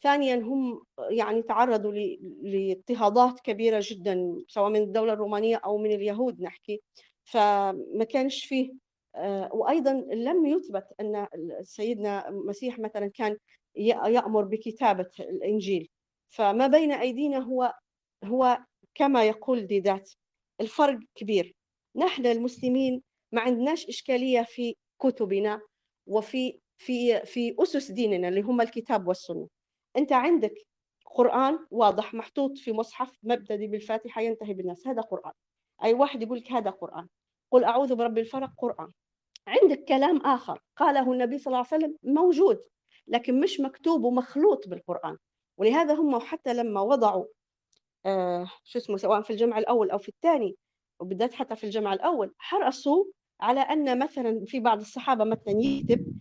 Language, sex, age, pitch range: Arabic, female, 50-69, 210-270 Hz